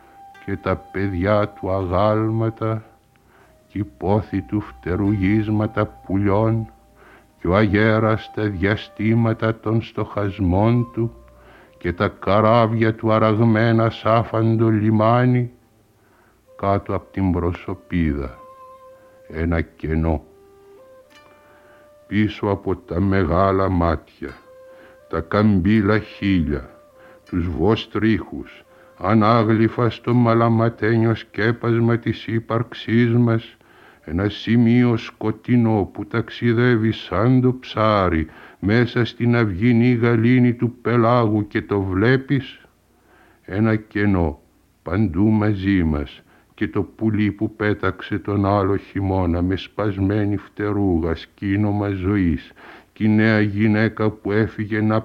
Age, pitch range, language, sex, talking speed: 60-79, 100-115 Hz, Greek, male, 95 wpm